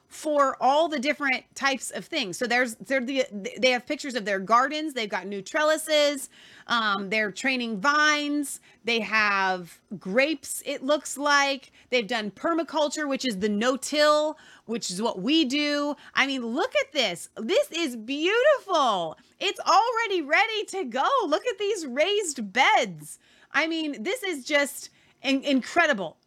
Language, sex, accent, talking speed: English, female, American, 155 wpm